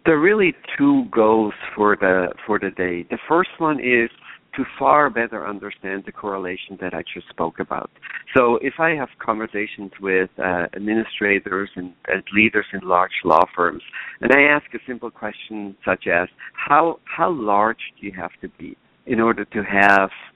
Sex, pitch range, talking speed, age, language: male, 95-120 Hz, 175 wpm, 60-79, English